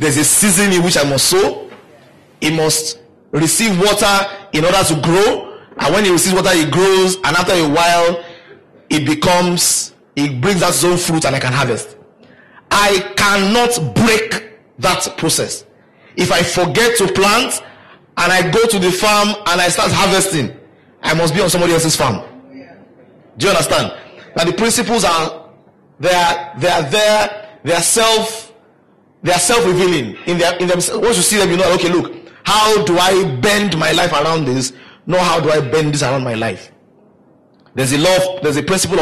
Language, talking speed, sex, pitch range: English, 180 wpm, male, 155-195 Hz